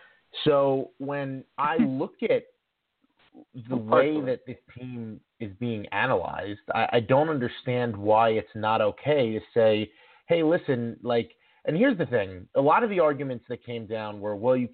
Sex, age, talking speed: male, 30-49, 165 wpm